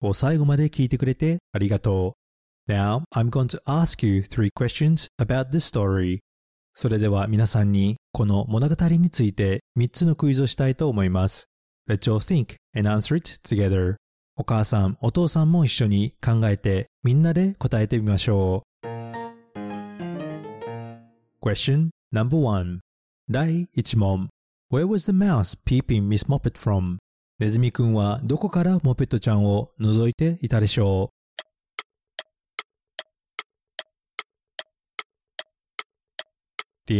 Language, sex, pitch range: Japanese, male, 105-160 Hz